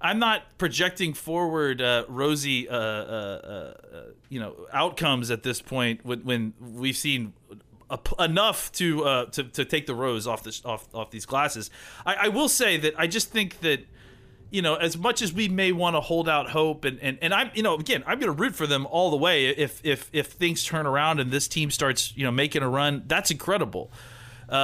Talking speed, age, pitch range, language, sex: 215 wpm, 30-49, 125-160 Hz, English, male